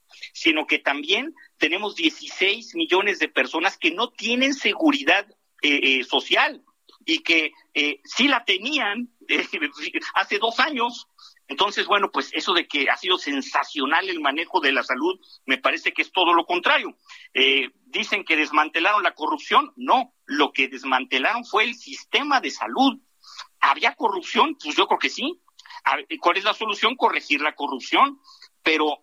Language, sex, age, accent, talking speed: Spanish, male, 50-69, Mexican, 155 wpm